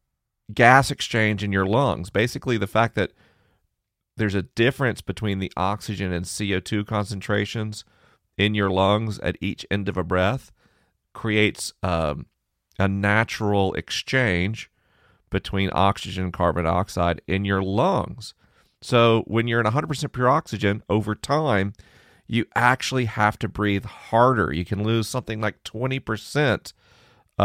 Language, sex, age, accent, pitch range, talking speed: English, male, 40-59, American, 95-115 Hz, 135 wpm